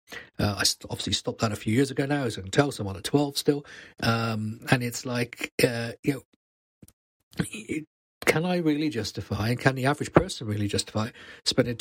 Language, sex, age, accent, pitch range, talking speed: English, male, 40-59, British, 110-145 Hz, 190 wpm